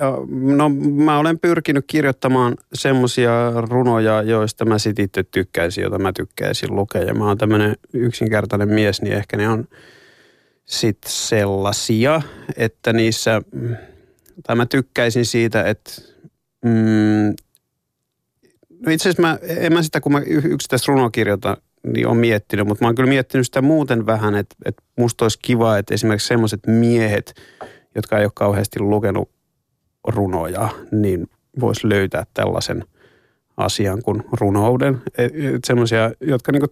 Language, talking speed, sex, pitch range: Finnish, 140 wpm, male, 105-130 Hz